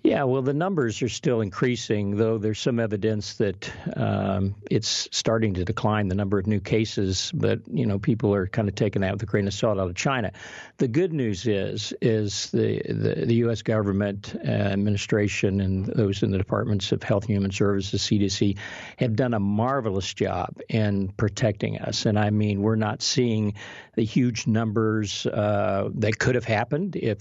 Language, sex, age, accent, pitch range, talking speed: English, male, 50-69, American, 100-115 Hz, 185 wpm